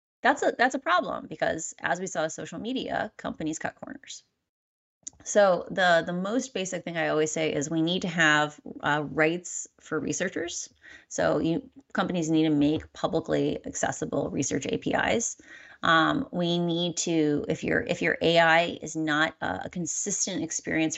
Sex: female